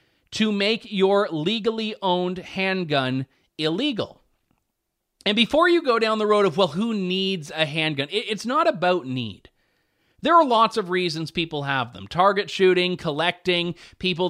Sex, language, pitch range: male, English, 170-230 Hz